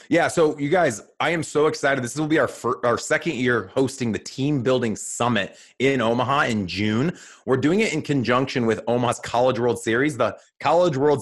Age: 30-49